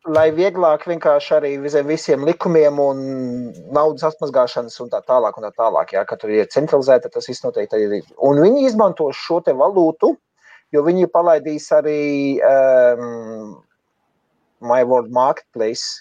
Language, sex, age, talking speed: English, male, 30-49, 135 wpm